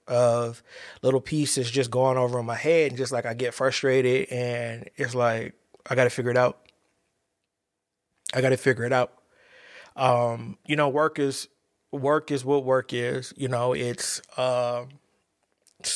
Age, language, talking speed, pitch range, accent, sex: 20-39, English, 165 wpm, 120-140 Hz, American, male